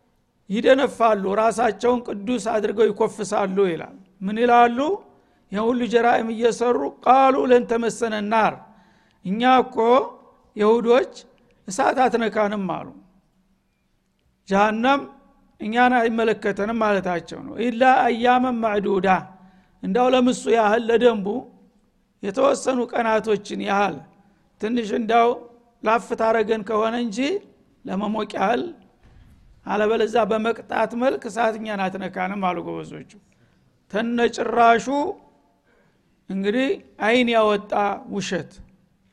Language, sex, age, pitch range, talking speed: Amharic, male, 60-79, 210-240 Hz, 80 wpm